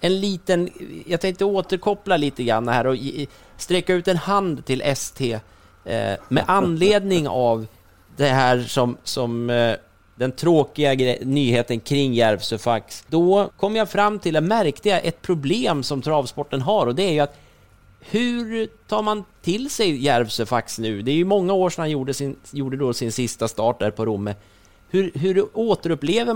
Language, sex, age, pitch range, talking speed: Swedish, male, 30-49, 115-175 Hz, 165 wpm